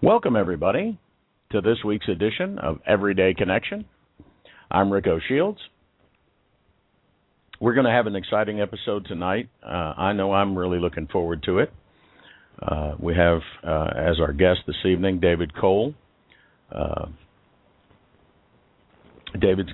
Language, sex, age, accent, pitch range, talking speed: English, male, 60-79, American, 85-100 Hz, 130 wpm